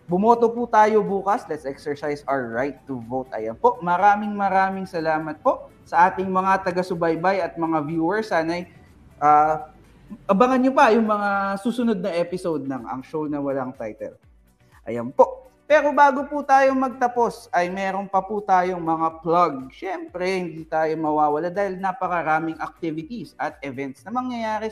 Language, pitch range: Filipino, 160-220 Hz